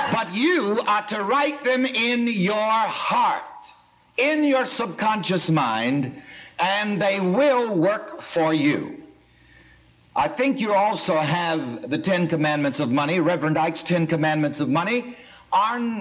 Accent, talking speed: American, 135 wpm